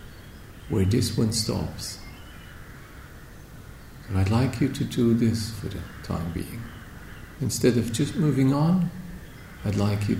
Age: 50-69